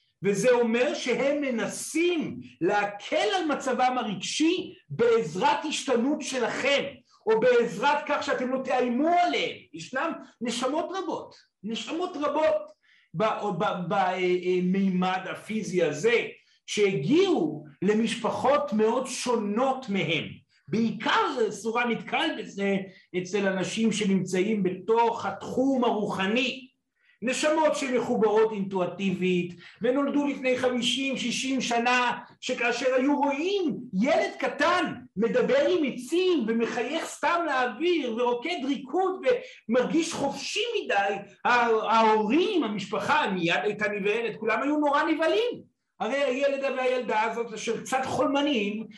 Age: 50-69